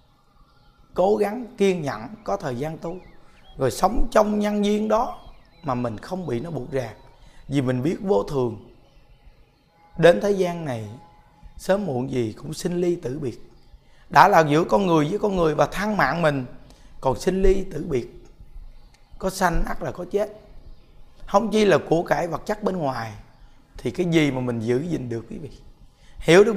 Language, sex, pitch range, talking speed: Vietnamese, male, 135-200 Hz, 185 wpm